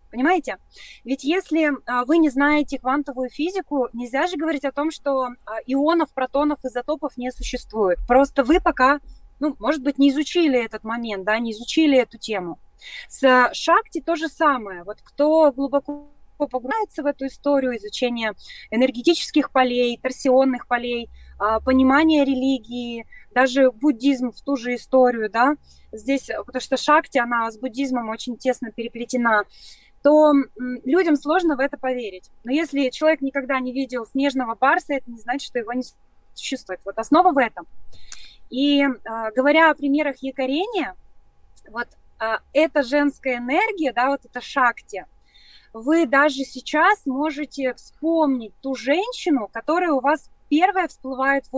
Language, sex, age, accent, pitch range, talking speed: Russian, female, 20-39, native, 245-300 Hz, 150 wpm